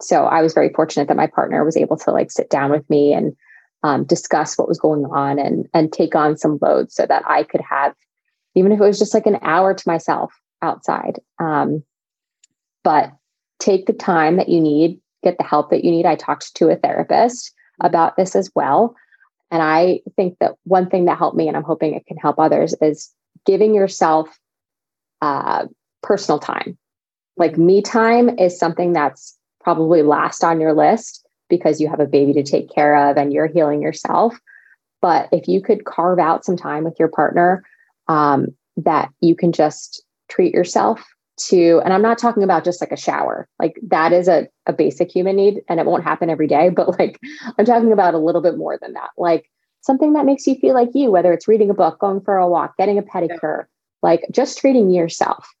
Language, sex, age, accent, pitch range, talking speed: English, female, 20-39, American, 160-205 Hz, 205 wpm